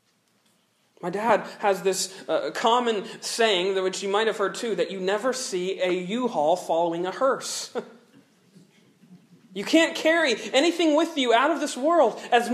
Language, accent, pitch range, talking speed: English, American, 195-265 Hz, 165 wpm